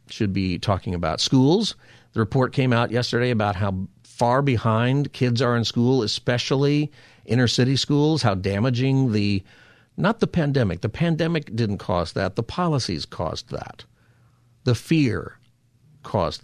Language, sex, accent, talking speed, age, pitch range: English, male, American, 145 wpm, 50-69, 110-130 Hz